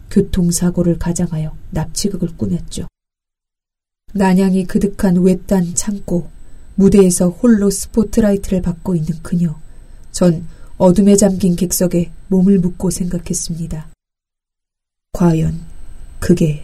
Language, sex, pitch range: Korean, female, 175-245 Hz